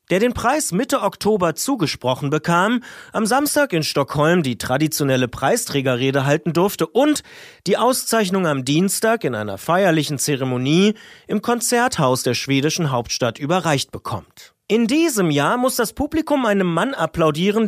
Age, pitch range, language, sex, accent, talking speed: 30-49, 145-220 Hz, German, male, German, 140 wpm